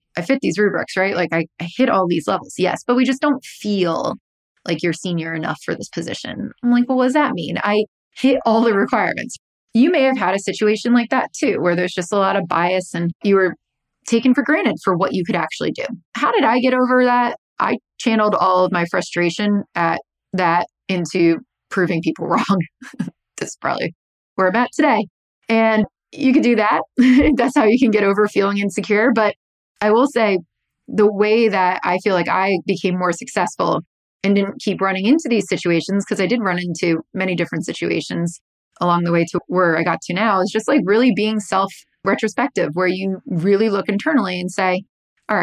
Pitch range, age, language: 180-235 Hz, 20-39, English